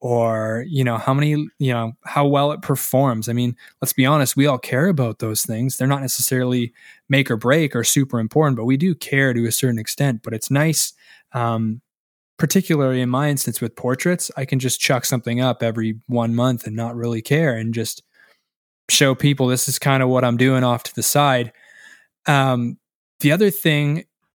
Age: 20-39